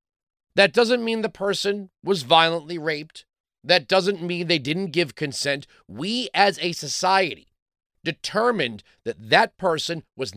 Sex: male